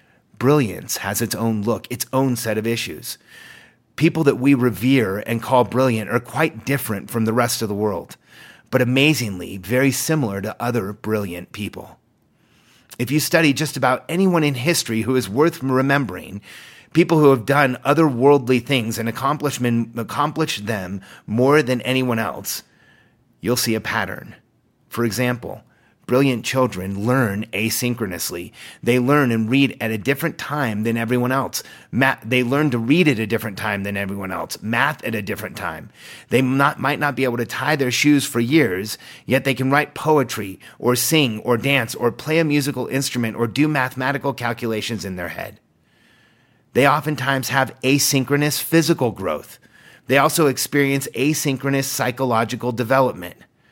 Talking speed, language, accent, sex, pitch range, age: 155 wpm, English, American, male, 115-140 Hz, 30-49